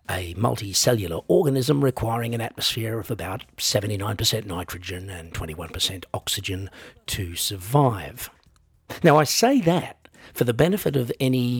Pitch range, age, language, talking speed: 105-145 Hz, 50-69, English, 125 wpm